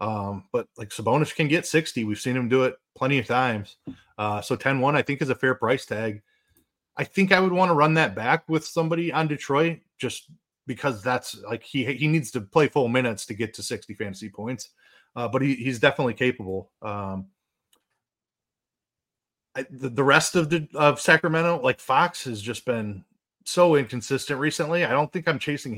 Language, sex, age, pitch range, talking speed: English, male, 30-49, 120-160 Hz, 190 wpm